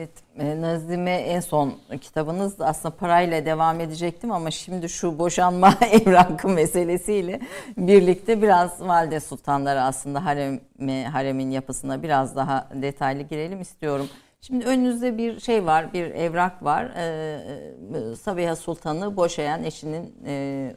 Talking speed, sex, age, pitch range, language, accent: 115 wpm, female, 50-69, 150-195 Hz, Turkish, native